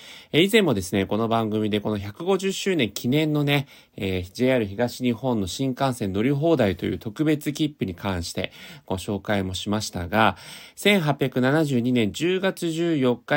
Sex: male